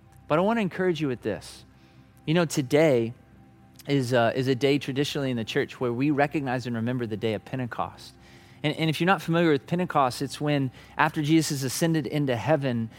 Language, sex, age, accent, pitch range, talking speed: English, male, 30-49, American, 135-205 Hz, 205 wpm